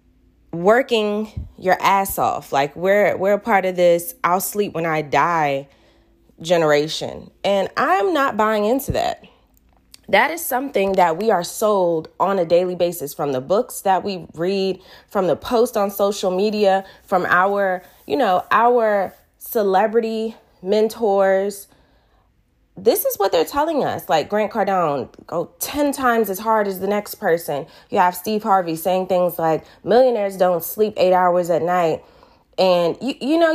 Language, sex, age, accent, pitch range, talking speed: English, female, 20-39, American, 170-225 Hz, 160 wpm